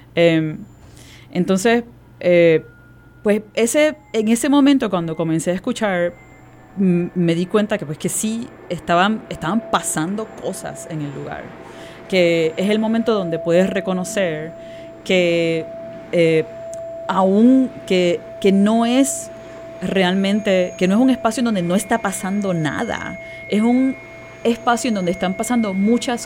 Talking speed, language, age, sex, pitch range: 130 wpm, Spanish, 30-49, female, 160-220 Hz